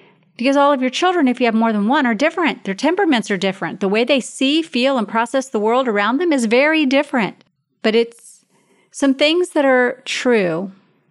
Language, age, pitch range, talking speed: English, 40-59, 195-250 Hz, 205 wpm